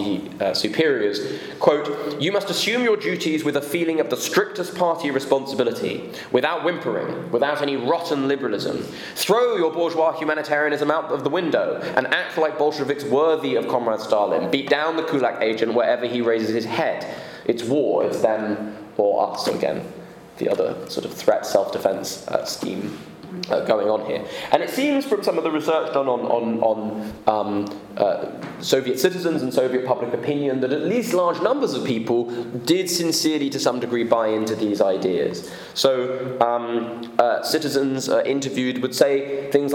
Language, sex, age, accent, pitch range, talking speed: English, male, 20-39, British, 120-160 Hz, 170 wpm